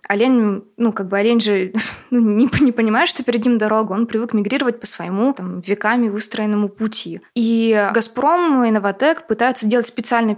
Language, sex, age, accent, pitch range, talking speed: Russian, female, 20-39, native, 200-240 Hz, 175 wpm